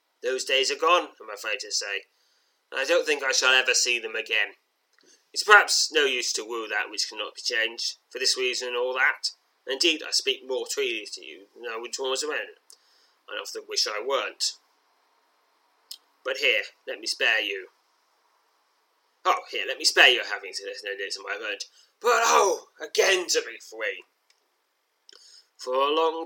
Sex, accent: male, British